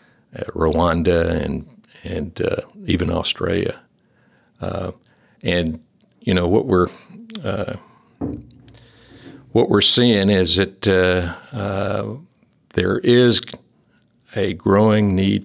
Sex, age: male, 60-79